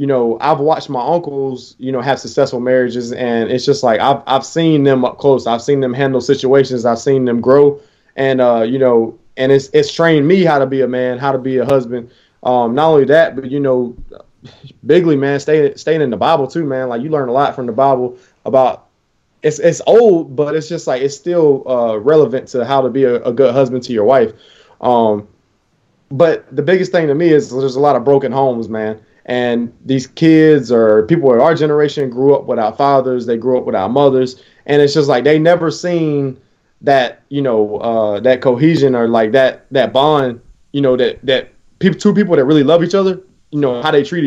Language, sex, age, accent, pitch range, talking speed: English, male, 20-39, American, 125-150 Hz, 225 wpm